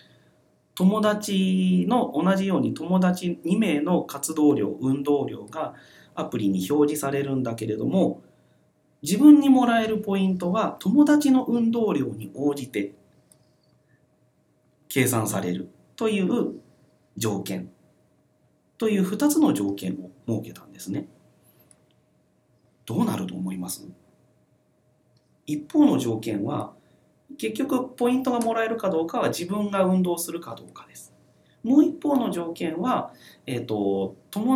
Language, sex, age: Japanese, male, 40-59